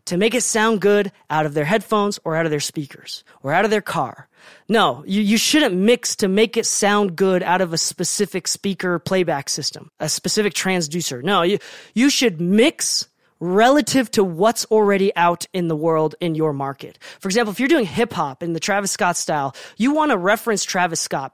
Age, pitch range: 30-49, 165-220 Hz